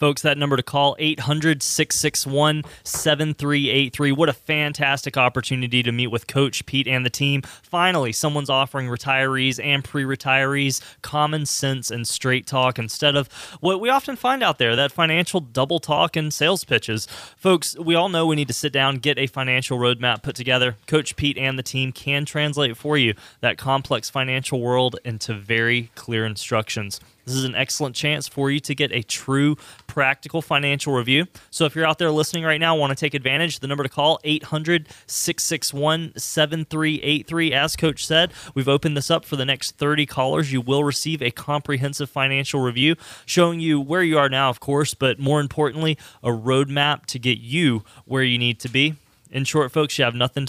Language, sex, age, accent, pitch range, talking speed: English, male, 20-39, American, 130-155 Hz, 180 wpm